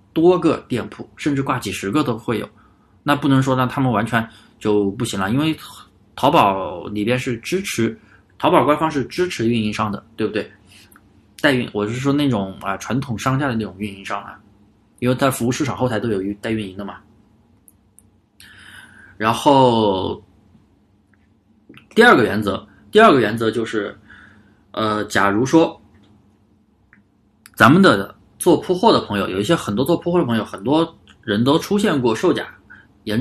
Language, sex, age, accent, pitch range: Chinese, male, 20-39, native, 105-145 Hz